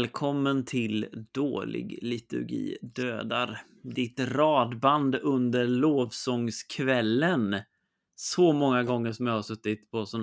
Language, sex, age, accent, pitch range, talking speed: Swedish, male, 30-49, native, 115-145 Hz, 105 wpm